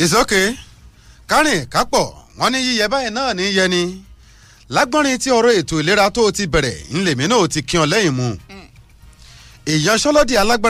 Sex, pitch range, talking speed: male, 160-235 Hz, 145 wpm